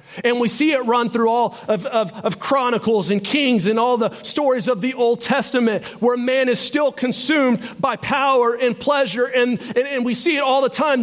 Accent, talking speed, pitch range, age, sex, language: American, 205 wpm, 205-260 Hz, 40-59, male, English